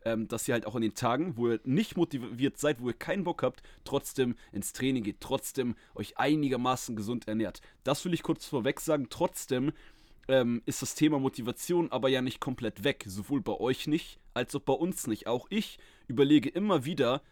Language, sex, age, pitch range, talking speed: German, male, 30-49, 120-155 Hz, 200 wpm